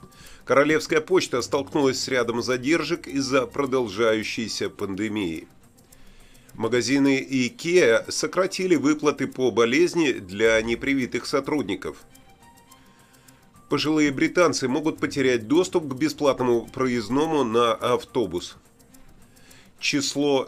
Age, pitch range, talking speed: 30-49, 120-150 Hz, 85 wpm